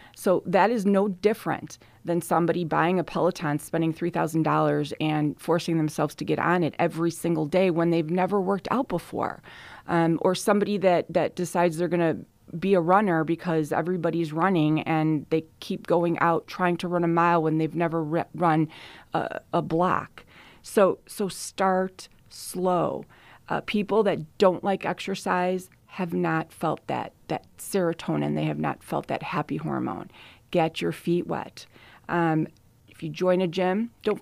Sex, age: female, 30-49